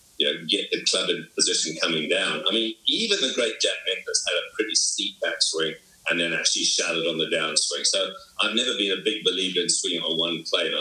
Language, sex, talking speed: English, male, 220 wpm